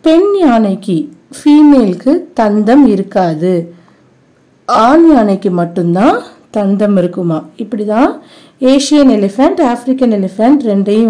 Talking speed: 80 wpm